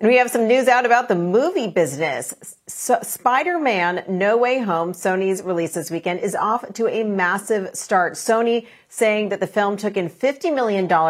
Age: 40-59